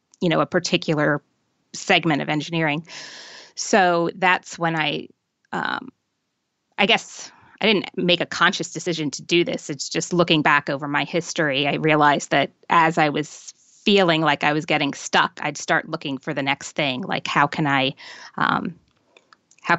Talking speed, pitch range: 165 wpm, 150-175 Hz